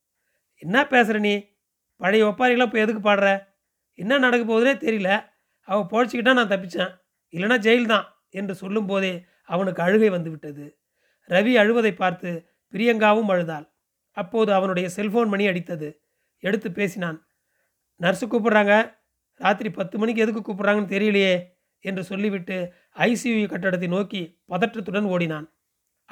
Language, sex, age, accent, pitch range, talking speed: Tamil, male, 30-49, native, 180-220 Hz, 115 wpm